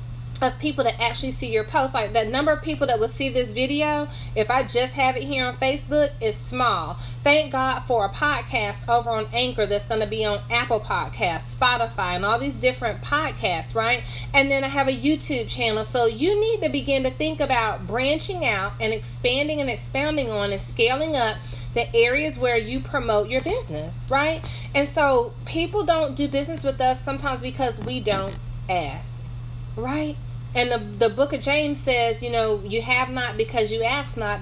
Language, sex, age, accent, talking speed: English, female, 30-49, American, 195 wpm